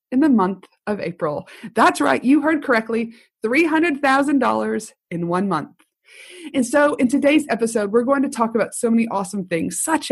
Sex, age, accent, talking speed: female, 30-49, American, 170 wpm